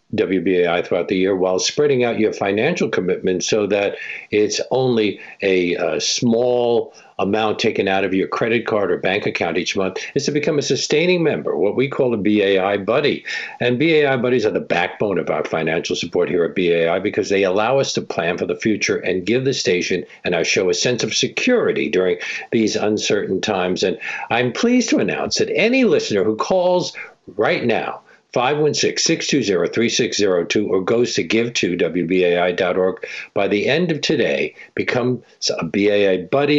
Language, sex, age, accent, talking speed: English, male, 50-69, American, 190 wpm